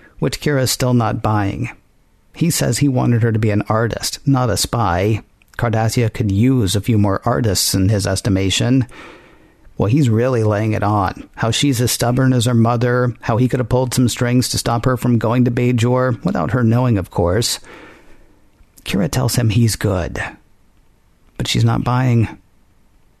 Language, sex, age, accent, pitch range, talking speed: English, male, 50-69, American, 115-130 Hz, 175 wpm